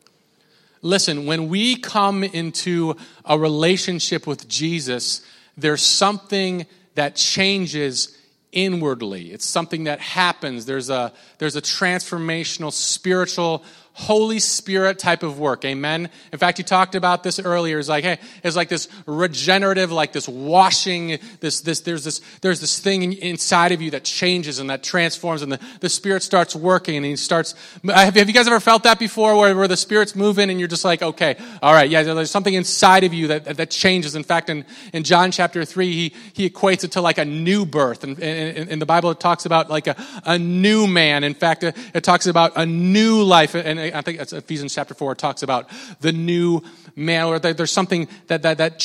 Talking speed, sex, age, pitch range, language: 190 wpm, male, 30-49, 155-190 Hz, English